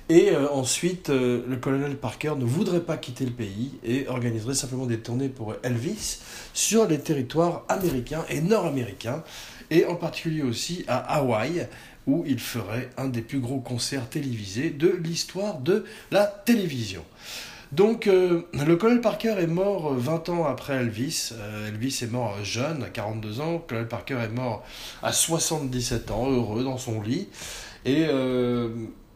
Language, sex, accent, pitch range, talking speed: French, male, French, 120-165 Hz, 160 wpm